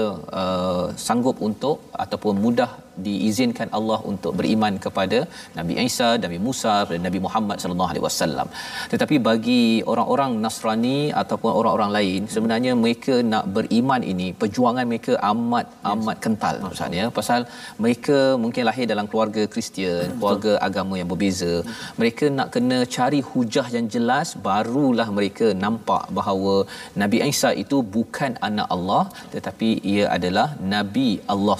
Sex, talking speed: male, 135 wpm